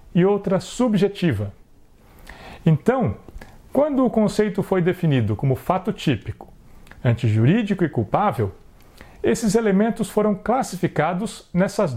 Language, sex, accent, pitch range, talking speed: Portuguese, male, Brazilian, 130-210 Hz, 100 wpm